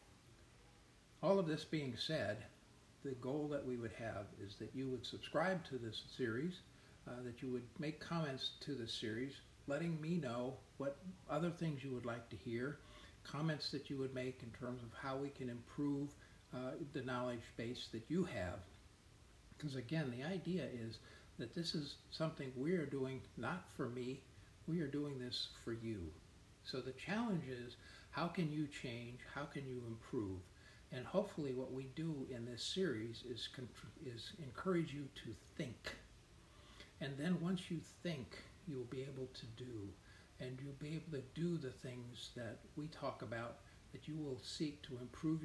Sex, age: male, 50-69